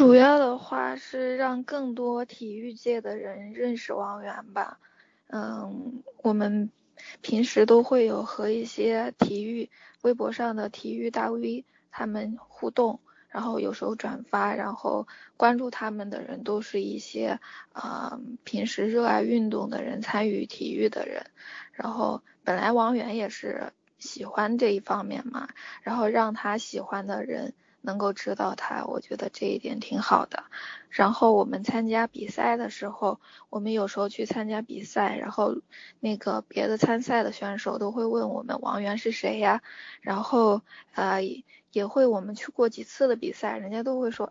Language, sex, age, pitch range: Chinese, female, 20-39, 210-245 Hz